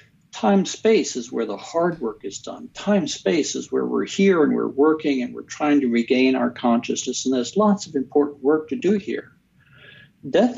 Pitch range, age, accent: 125-170 Hz, 60-79, American